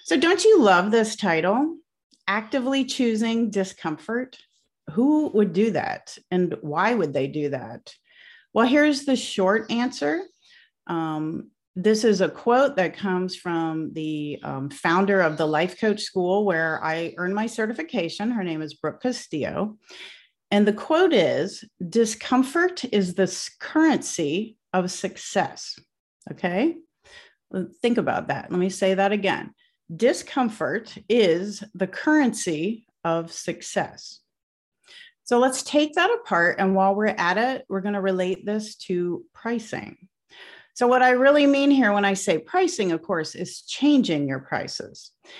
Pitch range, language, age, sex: 185-265 Hz, English, 40-59, female